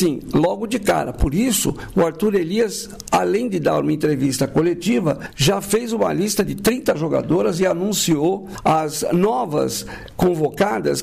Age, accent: 60-79, Brazilian